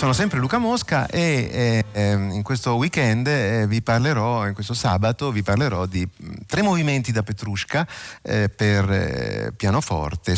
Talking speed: 155 wpm